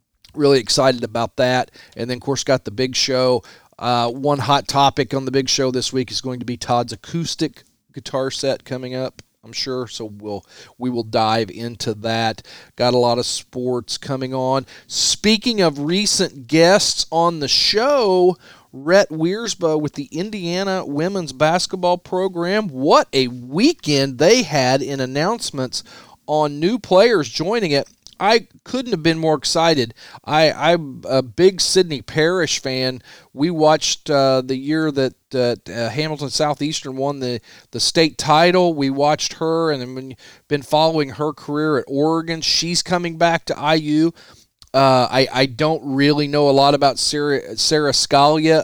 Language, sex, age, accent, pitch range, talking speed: English, male, 40-59, American, 125-155 Hz, 160 wpm